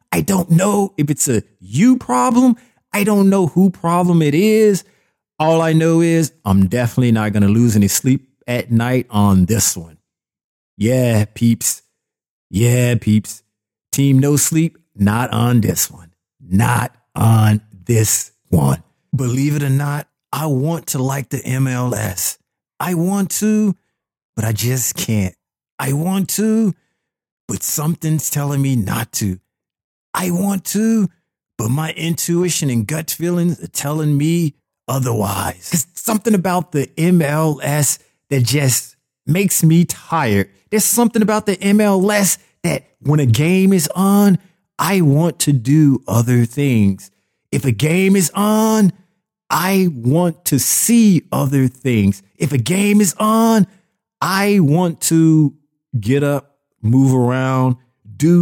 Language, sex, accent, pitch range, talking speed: English, male, American, 120-180 Hz, 140 wpm